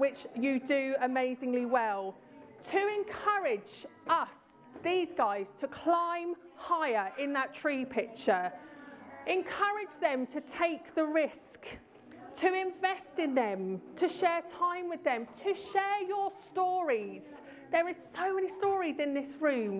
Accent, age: British, 30-49